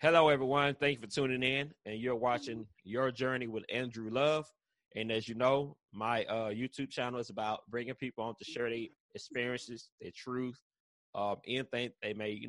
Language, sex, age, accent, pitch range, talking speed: English, male, 30-49, American, 105-125 Hz, 185 wpm